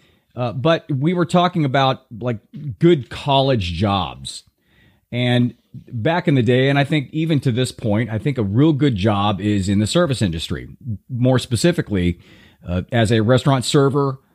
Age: 40-59